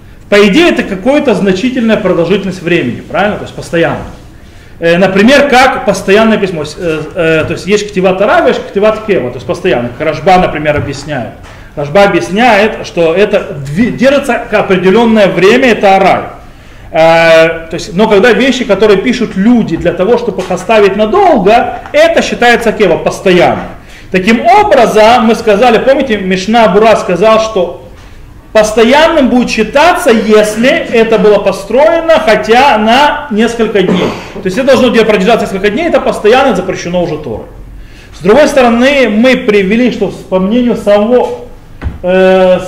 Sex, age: male, 30-49